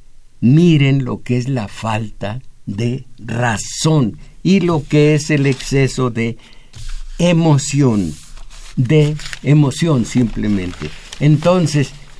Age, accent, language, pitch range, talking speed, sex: 60-79, Mexican, Spanish, 115-155 Hz, 100 wpm, male